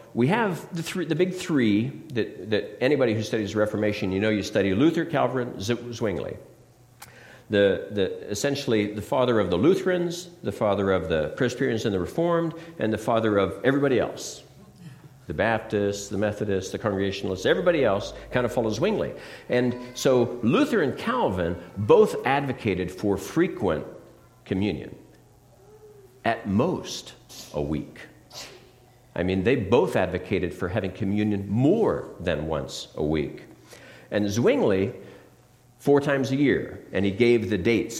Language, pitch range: English, 95-125 Hz